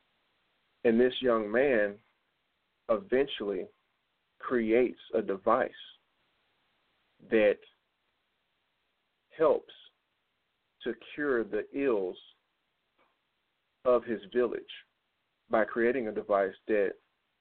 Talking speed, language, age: 75 wpm, English, 40-59